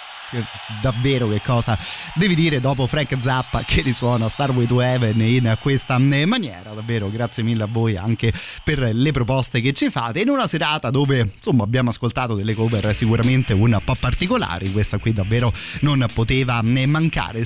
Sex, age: male, 30-49